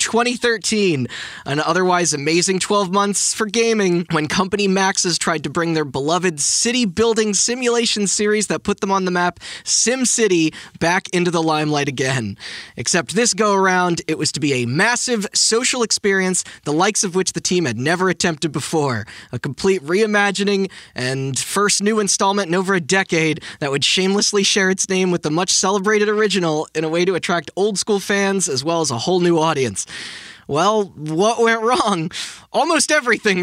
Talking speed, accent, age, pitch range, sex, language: 165 wpm, American, 20-39, 160-200 Hz, male, English